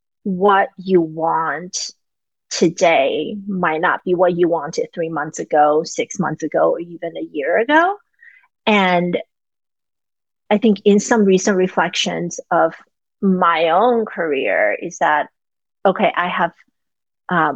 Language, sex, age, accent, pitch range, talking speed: English, female, 30-49, American, 165-210 Hz, 130 wpm